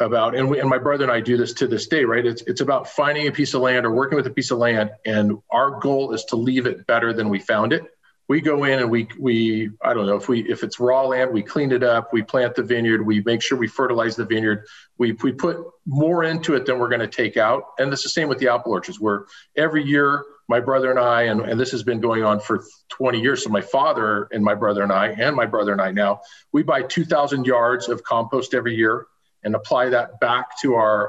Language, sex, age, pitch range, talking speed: English, male, 40-59, 110-135 Hz, 260 wpm